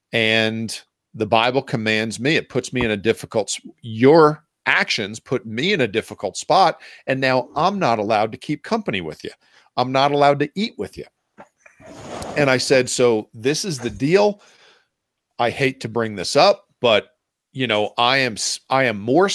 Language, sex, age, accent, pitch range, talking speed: English, male, 40-59, American, 120-160 Hz, 180 wpm